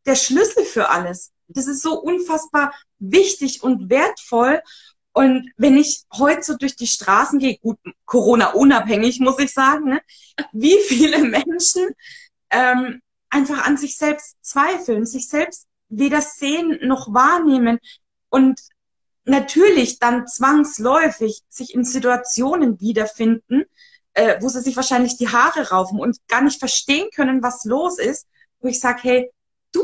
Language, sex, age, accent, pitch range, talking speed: German, female, 20-39, German, 235-300 Hz, 140 wpm